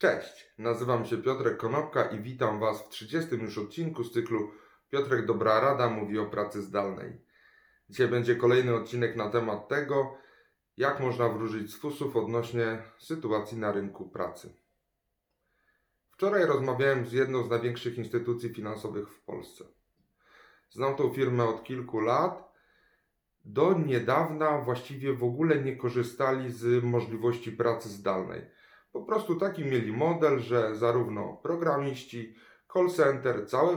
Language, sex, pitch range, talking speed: Polish, male, 115-140 Hz, 135 wpm